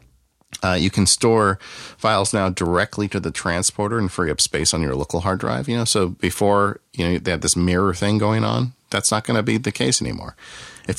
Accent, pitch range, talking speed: American, 80-110 Hz, 225 wpm